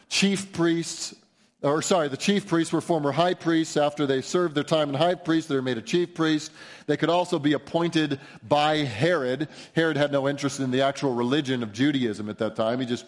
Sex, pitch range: male, 135-170 Hz